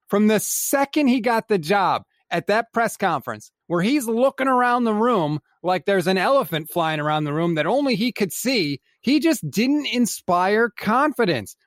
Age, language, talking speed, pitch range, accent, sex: 30-49, English, 180 wpm, 155-215 Hz, American, male